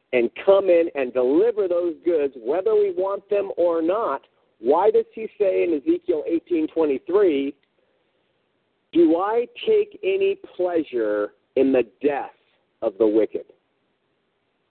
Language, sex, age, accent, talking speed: English, male, 50-69, American, 125 wpm